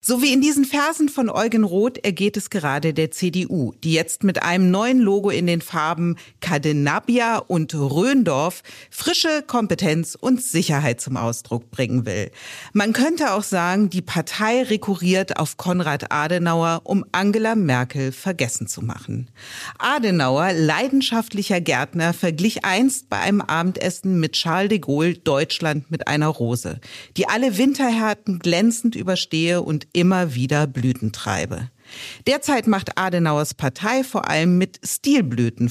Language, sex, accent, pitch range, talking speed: German, female, German, 150-220 Hz, 140 wpm